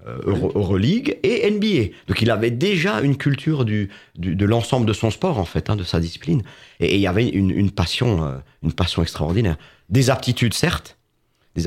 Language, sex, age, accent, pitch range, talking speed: French, male, 40-59, French, 90-125 Hz, 195 wpm